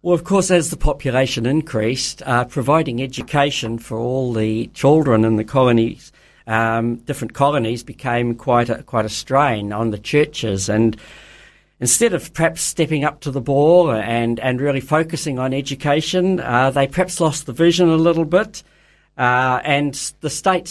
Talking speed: 165 wpm